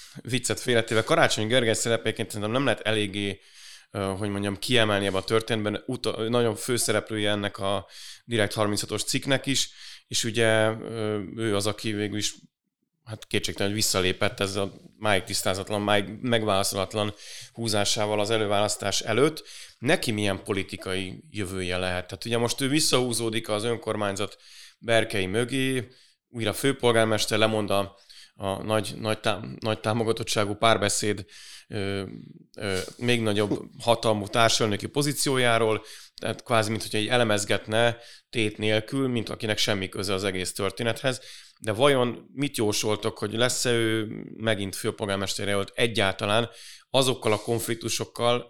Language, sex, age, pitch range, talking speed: Hungarian, male, 30-49, 100-115 Hz, 125 wpm